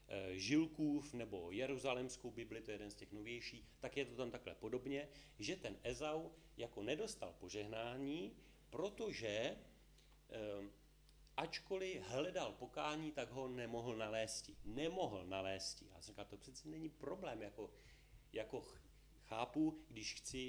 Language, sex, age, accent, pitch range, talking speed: Czech, male, 40-59, native, 100-140 Hz, 125 wpm